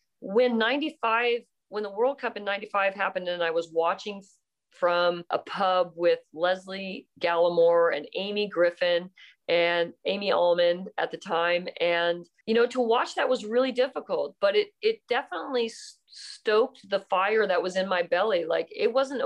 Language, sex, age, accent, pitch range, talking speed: English, female, 40-59, American, 180-245 Hz, 175 wpm